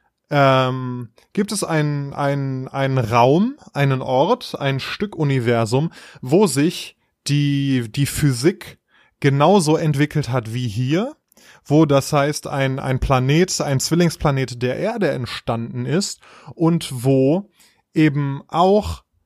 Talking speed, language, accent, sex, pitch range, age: 115 wpm, German, German, male, 135-185 Hz, 20-39